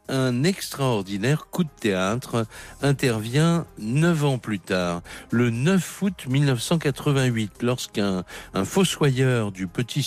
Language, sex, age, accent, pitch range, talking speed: French, male, 60-79, French, 105-140 Hz, 105 wpm